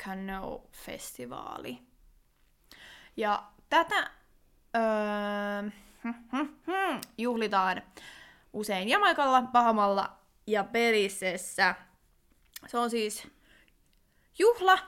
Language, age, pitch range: Finnish, 20-39, 195-250 Hz